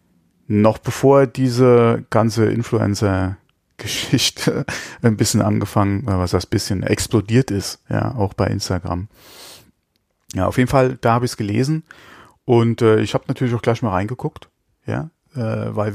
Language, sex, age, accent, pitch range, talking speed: German, male, 30-49, German, 105-125 Hz, 145 wpm